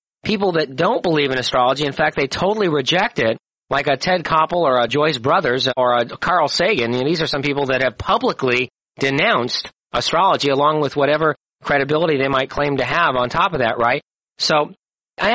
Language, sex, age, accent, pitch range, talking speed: English, male, 40-59, American, 140-175 Hz, 190 wpm